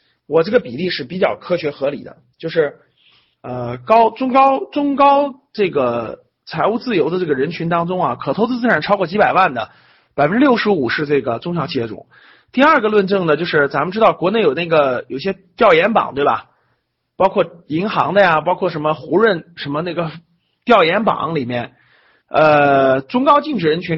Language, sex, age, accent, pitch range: Chinese, male, 30-49, native, 155-225 Hz